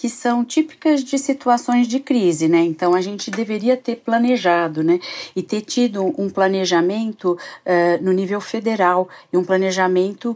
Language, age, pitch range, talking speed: Portuguese, 40-59, 180-230 Hz, 150 wpm